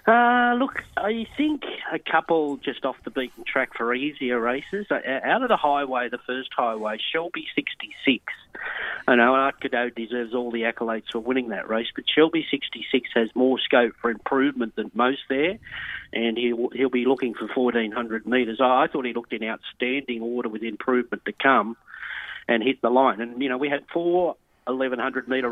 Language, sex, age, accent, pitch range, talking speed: English, male, 40-59, Australian, 120-145 Hz, 175 wpm